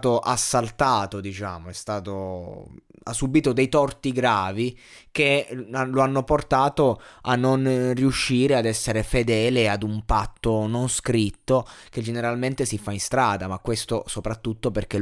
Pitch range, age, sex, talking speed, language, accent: 105-130 Hz, 20-39, male, 135 wpm, Italian, native